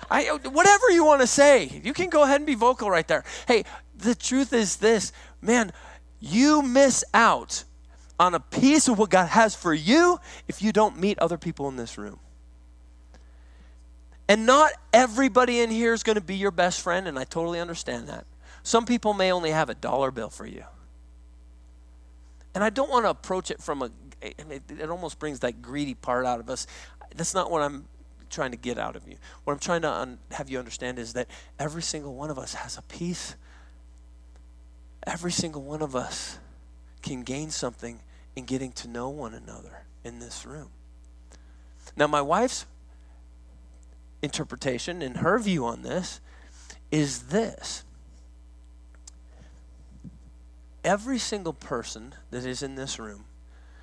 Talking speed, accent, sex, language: 165 wpm, American, male, English